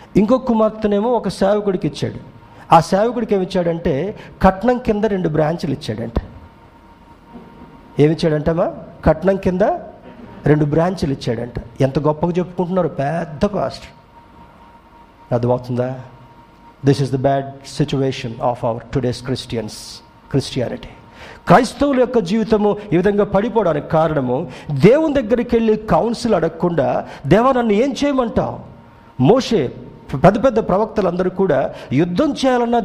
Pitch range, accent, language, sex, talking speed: 140-200 Hz, native, Telugu, male, 110 wpm